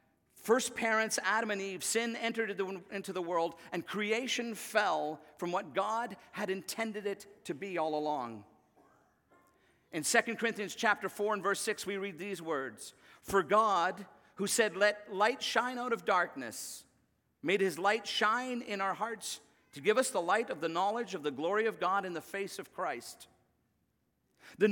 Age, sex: 50-69, male